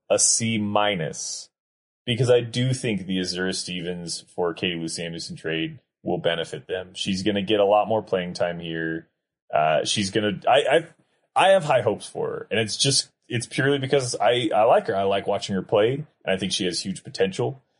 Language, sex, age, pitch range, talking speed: English, male, 20-39, 95-130 Hz, 205 wpm